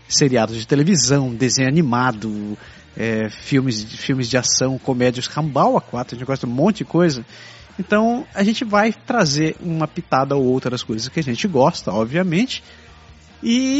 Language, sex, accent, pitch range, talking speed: Portuguese, male, Brazilian, 125-195 Hz, 170 wpm